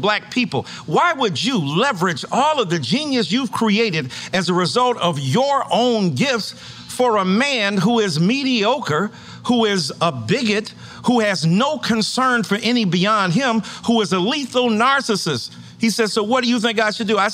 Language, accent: English, American